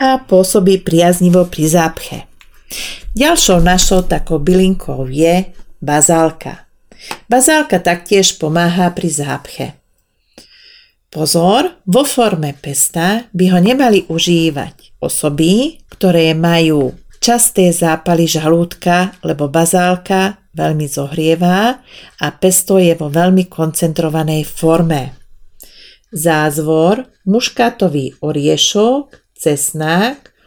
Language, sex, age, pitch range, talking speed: Slovak, female, 40-59, 155-200 Hz, 90 wpm